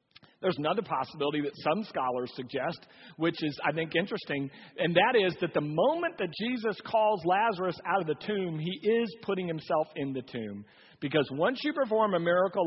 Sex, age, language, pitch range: male, 40-59, English, 145-220 Hz